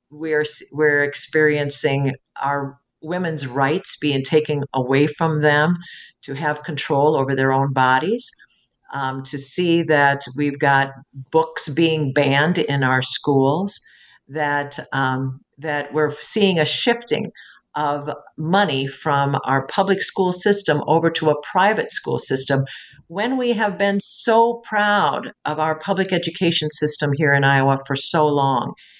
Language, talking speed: English, 140 wpm